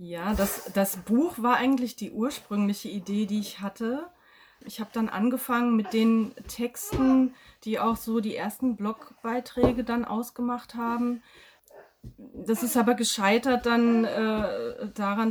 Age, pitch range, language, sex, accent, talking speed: 30-49, 195-235 Hz, German, female, German, 135 wpm